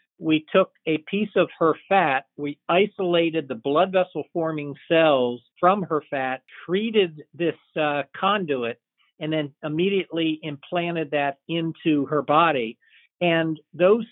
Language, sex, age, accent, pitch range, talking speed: English, male, 50-69, American, 145-175 Hz, 130 wpm